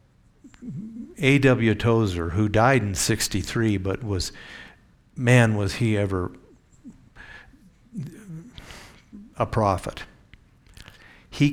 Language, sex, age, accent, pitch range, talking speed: English, male, 50-69, American, 100-125 Hz, 80 wpm